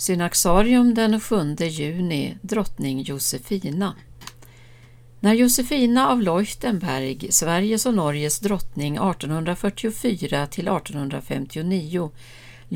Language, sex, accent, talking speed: Swedish, female, native, 70 wpm